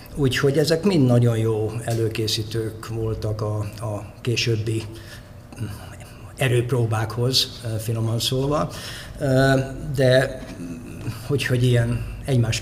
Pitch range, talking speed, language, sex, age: 110-125 Hz, 85 wpm, Hungarian, male, 50-69